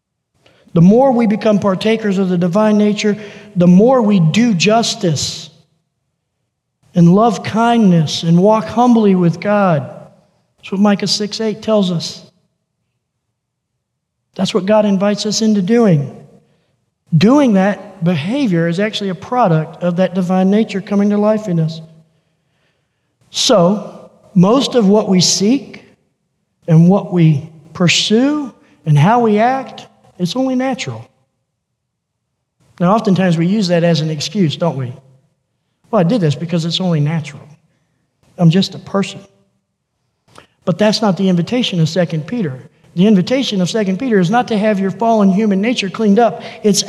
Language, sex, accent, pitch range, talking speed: English, male, American, 165-215 Hz, 145 wpm